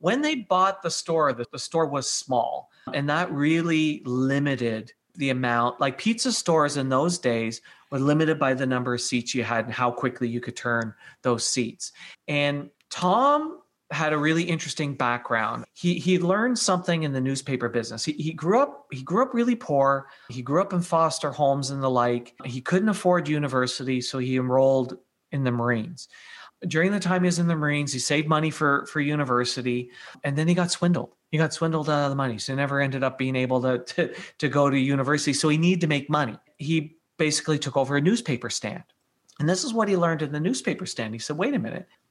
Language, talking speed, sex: English, 210 wpm, male